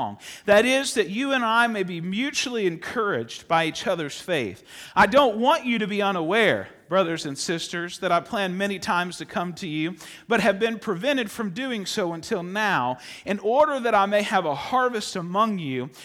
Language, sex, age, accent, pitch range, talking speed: English, male, 40-59, American, 185-255 Hz, 195 wpm